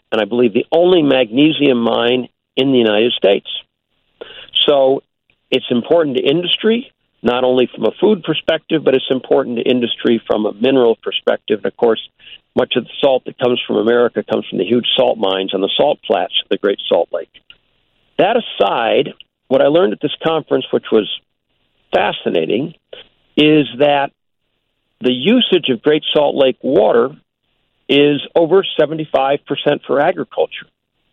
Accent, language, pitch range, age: American, English, 125-155 Hz, 50-69